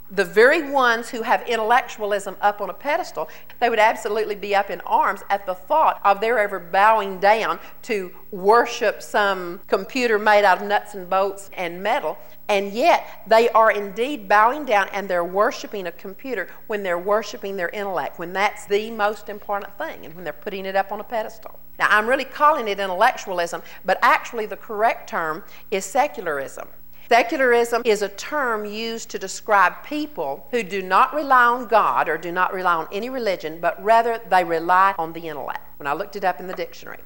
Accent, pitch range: American, 185-230 Hz